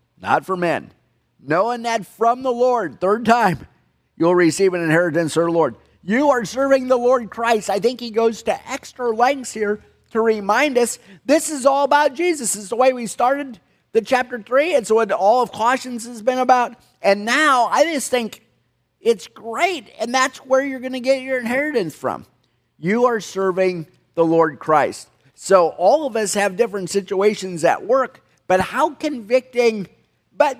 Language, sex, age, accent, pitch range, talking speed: English, male, 50-69, American, 150-245 Hz, 175 wpm